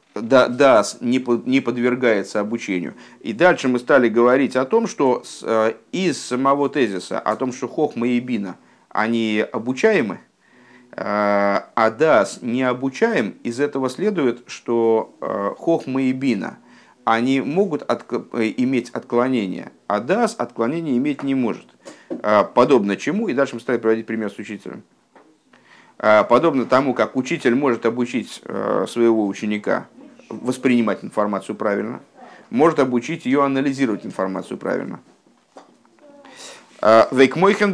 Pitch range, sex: 115-150 Hz, male